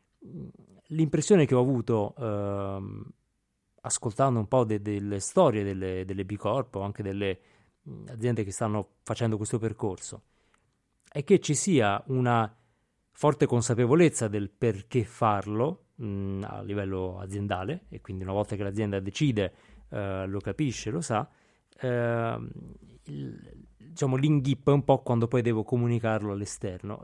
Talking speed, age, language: 135 wpm, 30-49, Italian